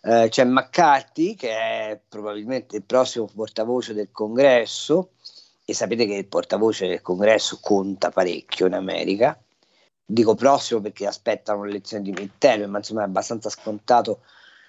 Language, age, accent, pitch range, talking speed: Italian, 40-59, native, 115-145 Hz, 135 wpm